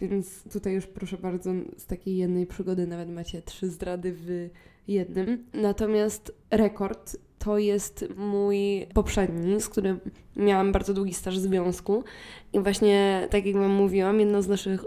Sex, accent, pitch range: female, native, 185-210 Hz